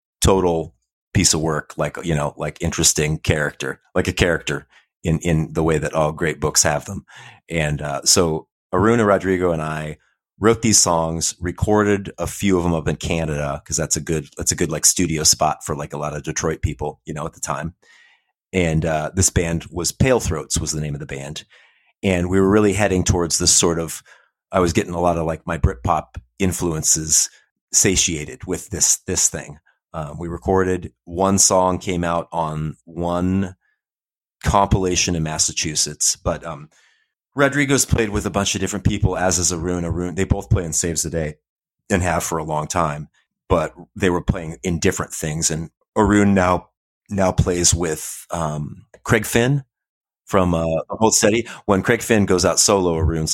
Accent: American